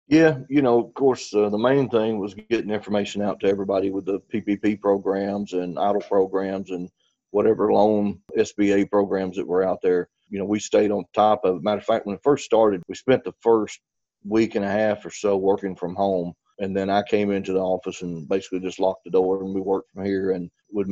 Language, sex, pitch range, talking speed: English, male, 95-105 Hz, 225 wpm